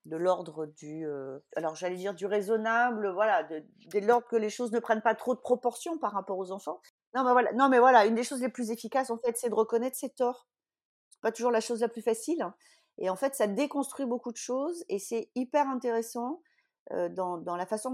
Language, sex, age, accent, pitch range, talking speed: French, female, 40-59, French, 200-250 Hz, 240 wpm